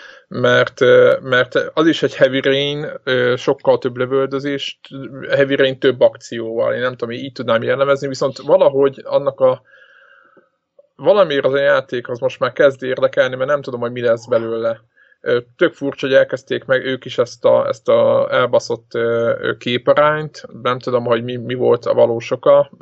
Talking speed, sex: 165 wpm, male